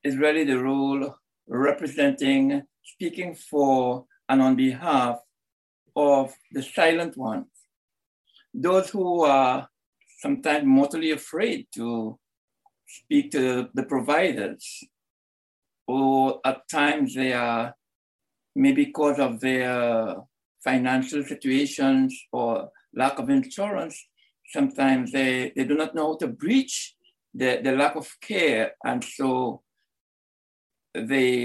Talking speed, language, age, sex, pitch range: 110 wpm, English, 60-79, male, 130-190 Hz